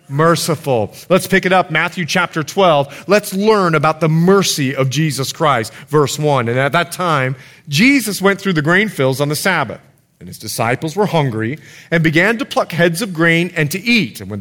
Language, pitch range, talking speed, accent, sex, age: English, 145-185 Hz, 200 wpm, American, male, 30-49